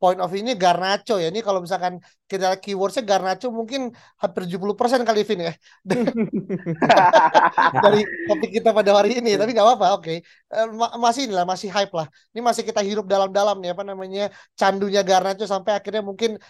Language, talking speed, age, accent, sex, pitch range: Indonesian, 170 wpm, 20-39, native, male, 180-220 Hz